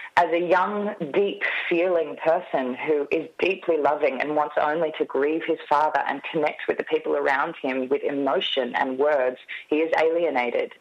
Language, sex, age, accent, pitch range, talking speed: English, female, 30-49, Australian, 150-195 Hz, 165 wpm